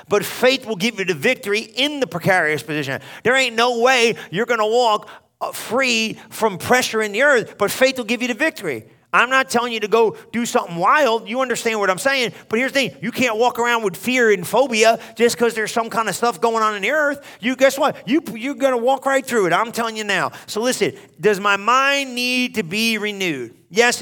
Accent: American